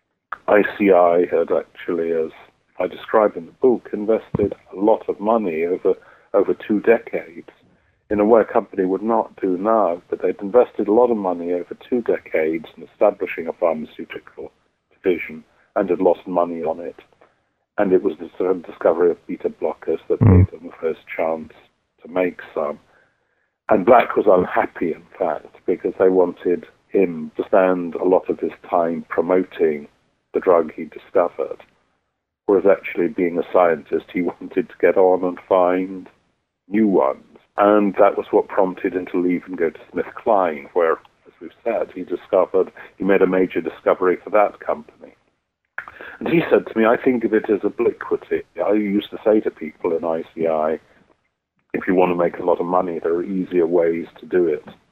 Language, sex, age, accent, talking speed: English, male, 50-69, British, 180 wpm